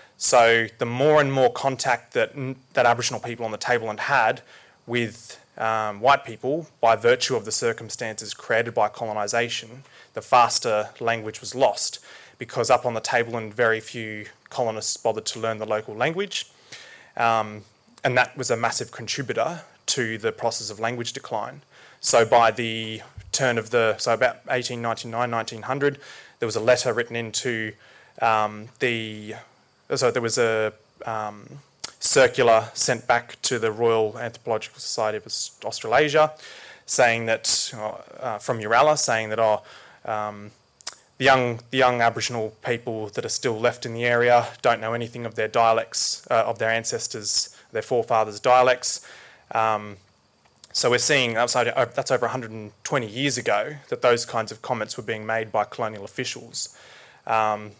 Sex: male